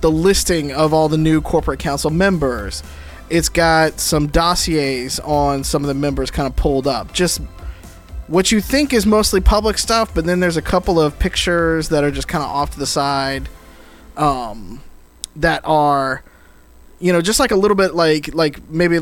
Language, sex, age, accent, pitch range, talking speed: English, male, 20-39, American, 135-180 Hz, 185 wpm